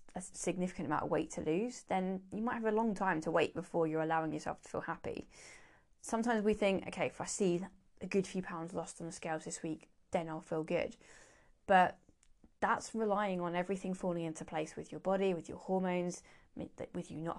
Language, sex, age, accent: English, female, 20-39, British